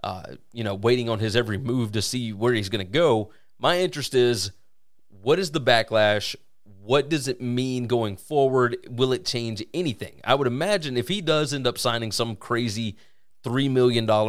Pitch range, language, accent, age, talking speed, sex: 110-140 Hz, English, American, 30-49, 190 wpm, male